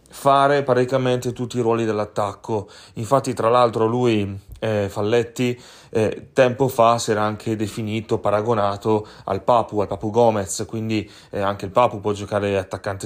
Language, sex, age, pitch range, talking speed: Italian, male, 30-49, 105-120 Hz, 150 wpm